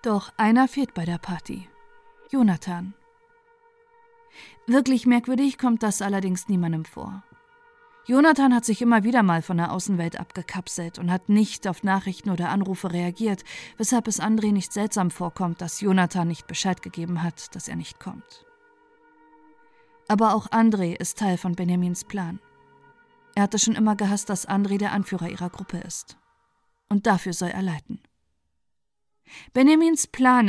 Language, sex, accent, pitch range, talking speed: German, female, German, 185-275 Hz, 150 wpm